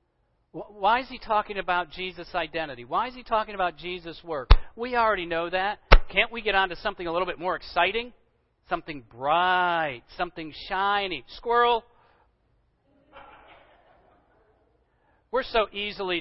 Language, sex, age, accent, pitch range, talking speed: English, male, 50-69, American, 140-175 Hz, 135 wpm